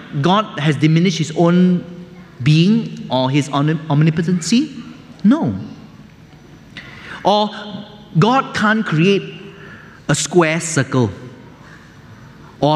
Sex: male